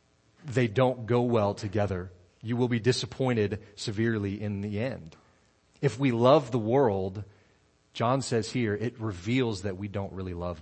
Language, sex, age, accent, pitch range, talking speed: English, male, 40-59, American, 100-130 Hz, 160 wpm